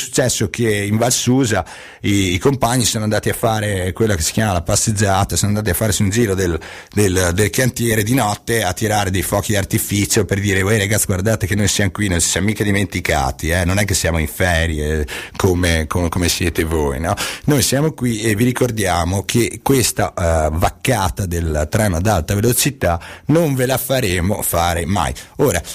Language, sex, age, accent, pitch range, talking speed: Italian, male, 30-49, native, 85-115 Hz, 195 wpm